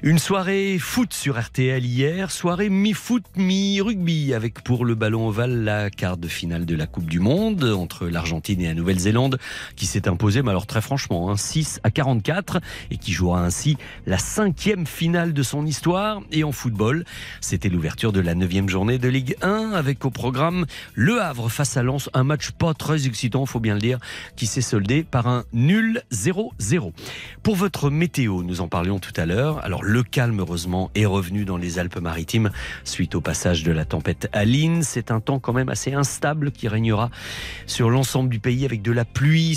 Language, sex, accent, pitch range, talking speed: French, male, French, 100-145 Hz, 190 wpm